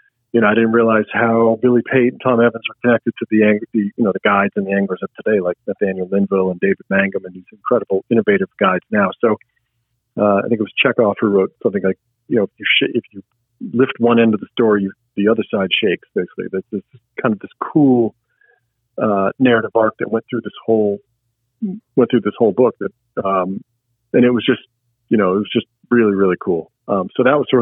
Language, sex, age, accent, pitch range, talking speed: English, male, 40-59, American, 105-120 Hz, 230 wpm